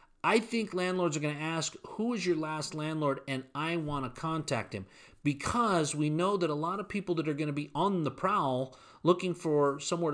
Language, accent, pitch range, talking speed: English, American, 135-185 Hz, 220 wpm